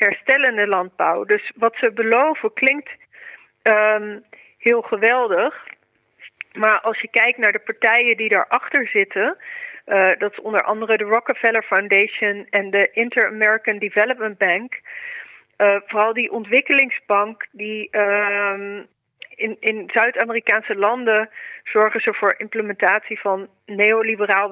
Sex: female